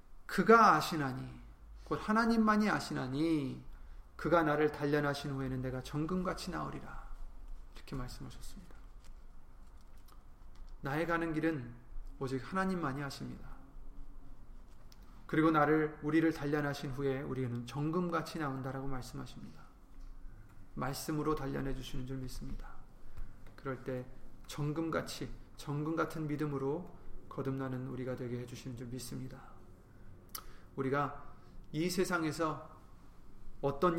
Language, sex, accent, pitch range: Korean, male, native, 110-170 Hz